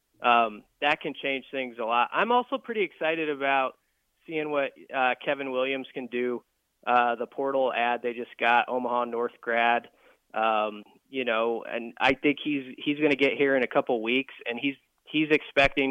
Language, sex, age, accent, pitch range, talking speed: English, male, 20-39, American, 120-145 Hz, 180 wpm